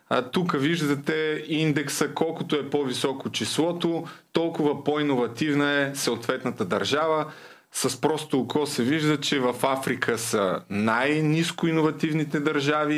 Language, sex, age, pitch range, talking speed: Bulgarian, male, 20-39, 125-155 Hz, 115 wpm